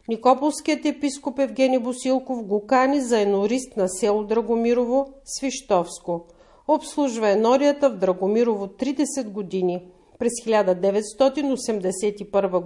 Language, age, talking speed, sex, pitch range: Bulgarian, 40-59, 95 wpm, female, 205-260 Hz